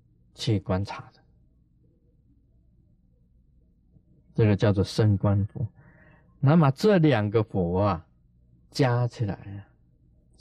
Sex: male